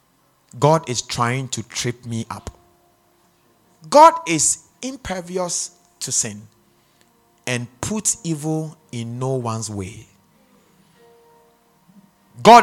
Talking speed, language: 95 wpm, English